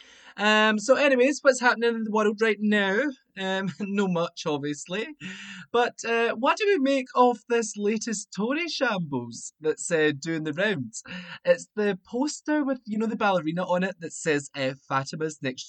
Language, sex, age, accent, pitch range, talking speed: English, male, 20-39, British, 140-220 Hz, 170 wpm